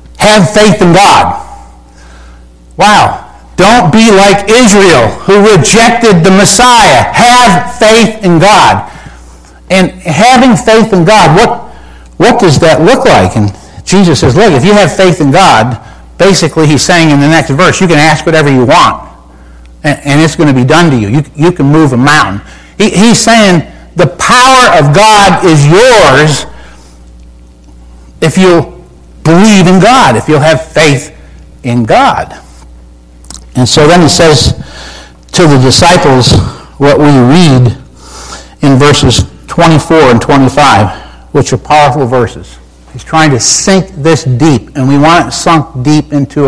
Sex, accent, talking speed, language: male, American, 150 wpm, English